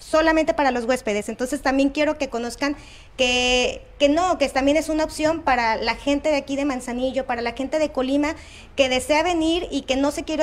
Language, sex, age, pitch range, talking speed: Spanish, female, 30-49, 250-295 Hz, 215 wpm